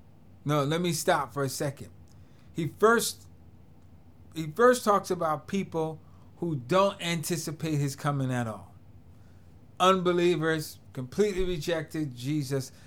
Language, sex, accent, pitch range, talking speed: English, male, American, 125-180 Hz, 115 wpm